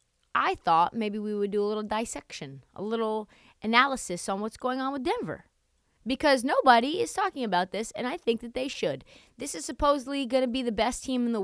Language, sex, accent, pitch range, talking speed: English, female, American, 210-270 Hz, 215 wpm